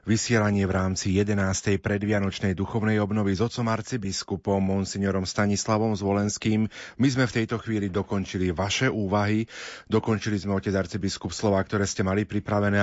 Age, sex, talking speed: 30-49, male, 140 wpm